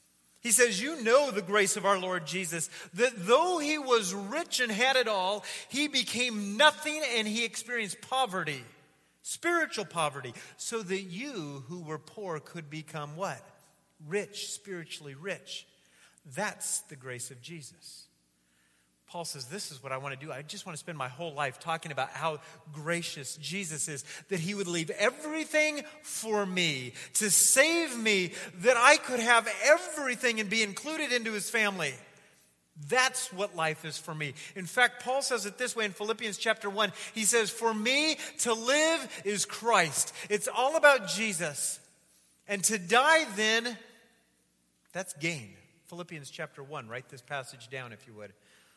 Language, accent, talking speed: English, American, 165 wpm